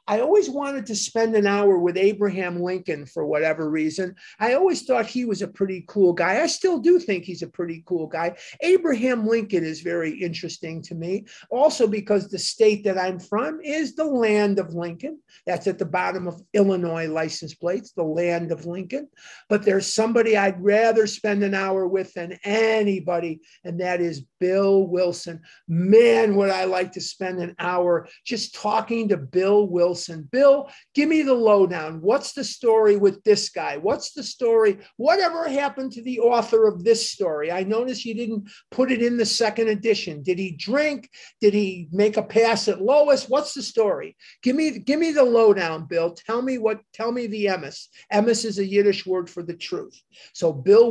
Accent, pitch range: American, 185-255 Hz